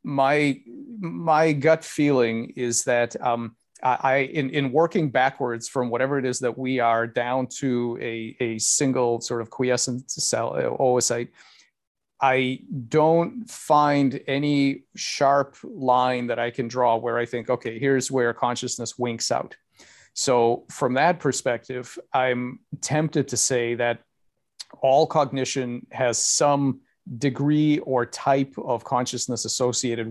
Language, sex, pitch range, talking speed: English, male, 120-140 Hz, 135 wpm